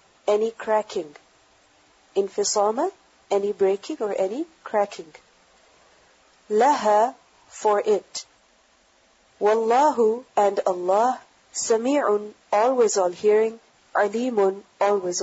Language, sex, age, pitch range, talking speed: English, female, 40-59, 200-260 Hz, 80 wpm